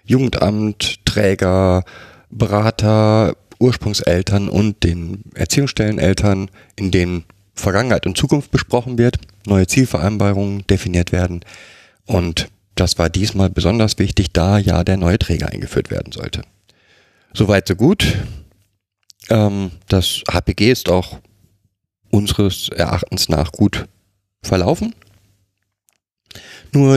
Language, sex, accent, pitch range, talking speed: German, male, German, 90-105 Hz, 100 wpm